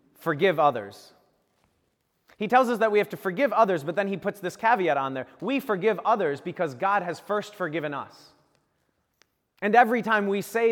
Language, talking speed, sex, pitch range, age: English, 185 wpm, male, 140-205 Hz, 30-49